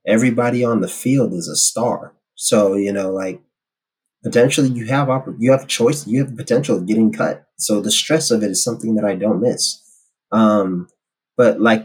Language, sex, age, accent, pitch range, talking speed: English, male, 30-49, American, 105-135 Hz, 185 wpm